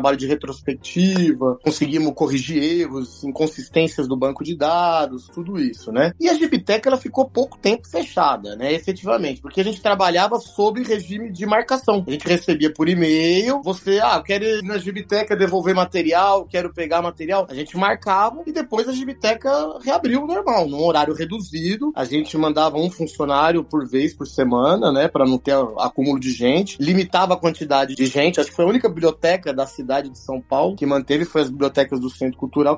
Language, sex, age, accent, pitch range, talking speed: Portuguese, male, 30-49, Brazilian, 150-220 Hz, 185 wpm